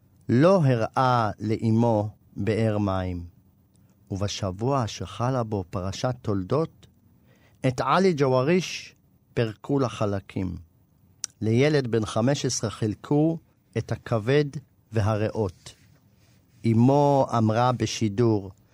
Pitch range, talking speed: 105-135 Hz, 85 wpm